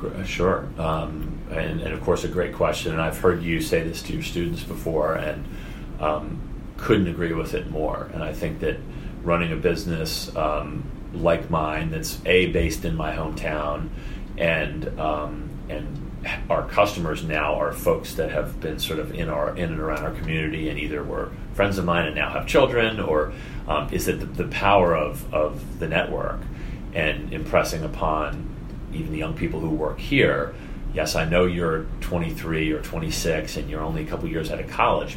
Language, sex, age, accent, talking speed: English, male, 30-49, American, 185 wpm